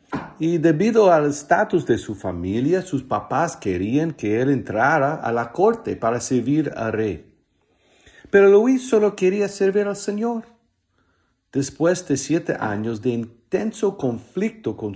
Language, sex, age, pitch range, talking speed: English, male, 50-69, 110-160 Hz, 140 wpm